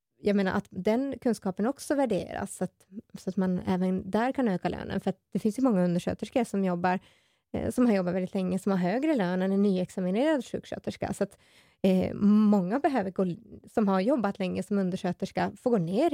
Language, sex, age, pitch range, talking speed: Swedish, female, 20-39, 185-225 Hz, 205 wpm